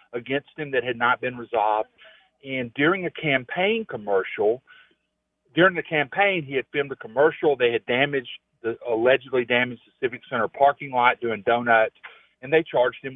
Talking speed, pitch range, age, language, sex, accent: 170 wpm, 115-180 Hz, 50-69, English, male, American